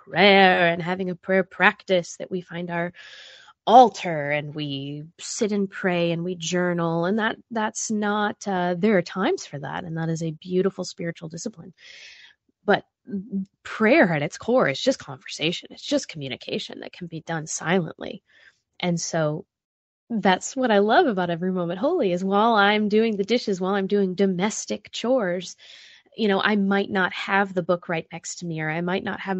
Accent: American